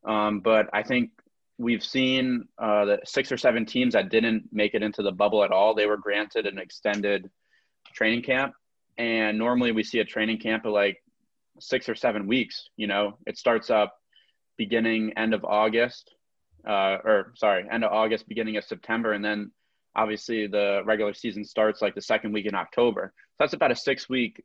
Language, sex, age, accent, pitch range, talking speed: English, male, 20-39, American, 105-115 Hz, 190 wpm